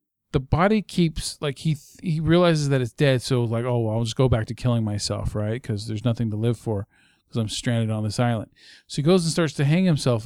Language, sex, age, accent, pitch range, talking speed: English, male, 40-59, American, 120-165 Hz, 250 wpm